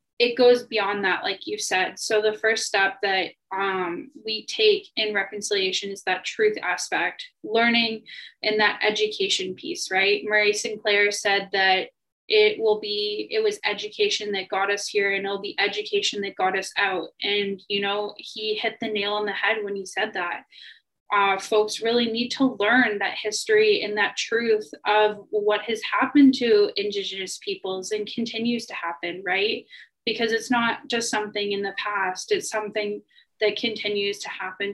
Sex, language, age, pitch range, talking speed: female, English, 10-29, 200-245 Hz, 175 wpm